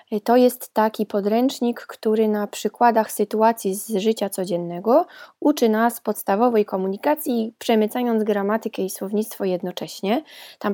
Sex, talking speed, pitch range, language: female, 115 wpm, 205-235 Hz, Polish